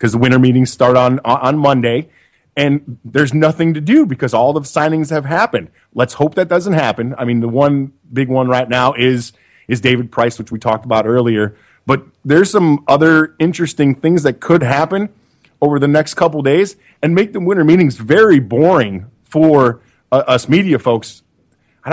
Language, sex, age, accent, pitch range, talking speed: English, male, 30-49, American, 120-150 Hz, 185 wpm